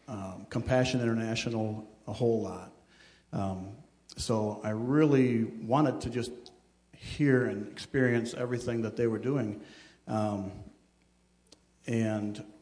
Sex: male